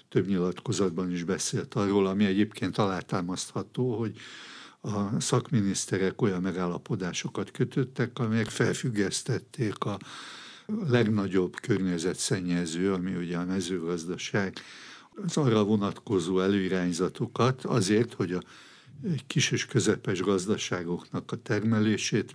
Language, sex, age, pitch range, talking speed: Hungarian, male, 60-79, 95-125 Hz, 95 wpm